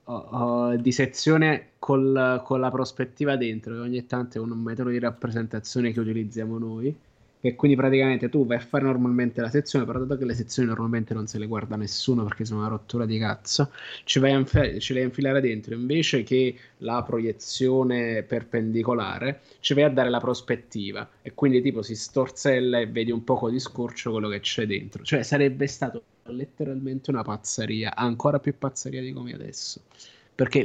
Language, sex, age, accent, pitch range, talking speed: Italian, male, 20-39, native, 115-130 Hz, 185 wpm